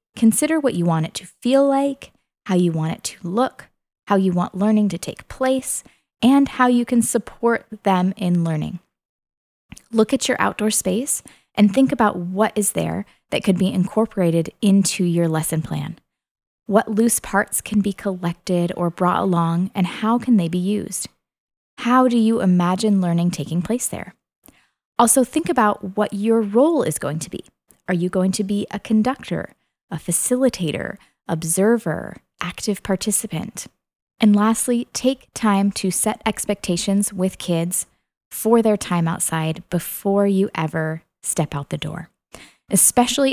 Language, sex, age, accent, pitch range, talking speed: English, female, 20-39, American, 175-230 Hz, 160 wpm